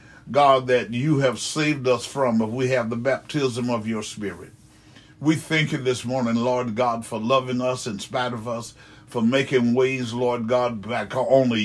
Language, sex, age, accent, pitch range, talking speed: English, male, 60-79, American, 120-135 Hz, 185 wpm